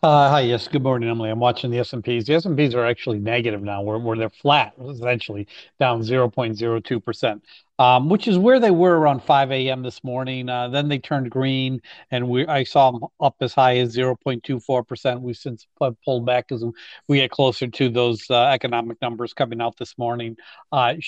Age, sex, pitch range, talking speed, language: 50-69, male, 120-135 Hz, 190 wpm, English